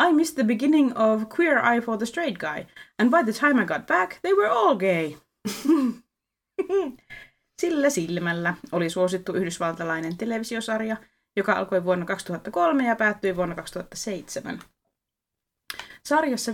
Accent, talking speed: native, 135 wpm